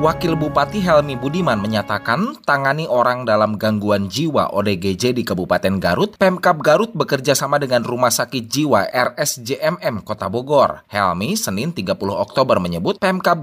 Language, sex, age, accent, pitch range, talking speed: Indonesian, male, 20-39, native, 105-170 Hz, 135 wpm